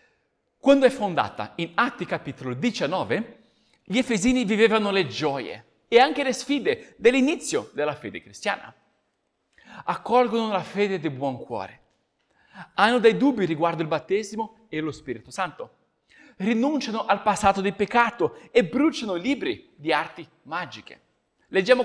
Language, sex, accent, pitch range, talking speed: Italian, male, native, 180-245 Hz, 130 wpm